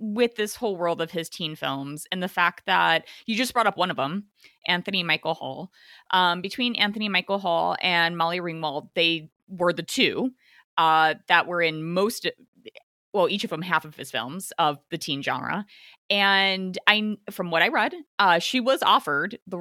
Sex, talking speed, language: female, 190 wpm, English